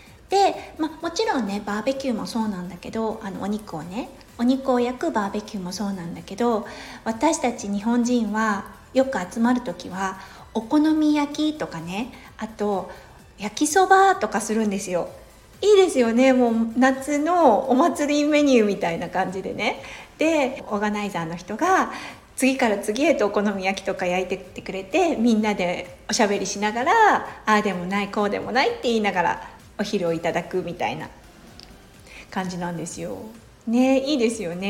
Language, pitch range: Japanese, 200-270 Hz